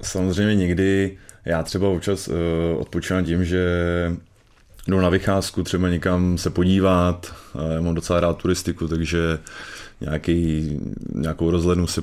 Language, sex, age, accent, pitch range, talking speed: Czech, male, 20-39, native, 85-95 Hz, 135 wpm